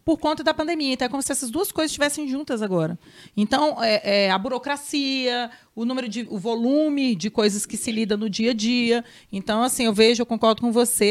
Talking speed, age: 220 wpm, 40-59